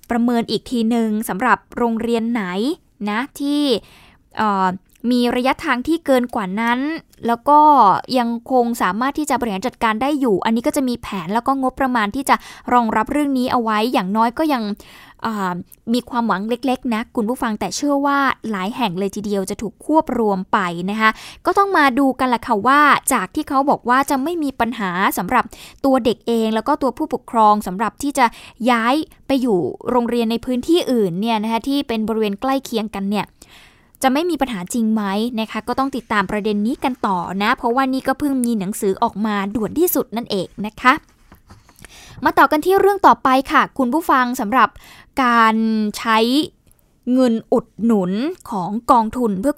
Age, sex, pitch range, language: 10-29, female, 220-270 Hz, Thai